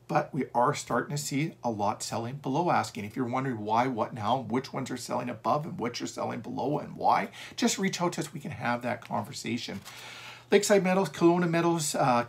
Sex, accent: male, American